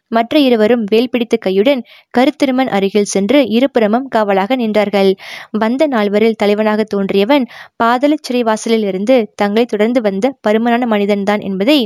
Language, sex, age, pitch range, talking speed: Tamil, female, 20-39, 200-240 Hz, 110 wpm